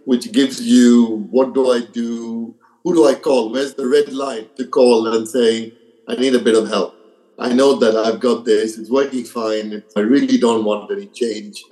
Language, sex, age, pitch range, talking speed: English, male, 50-69, 110-135 Hz, 205 wpm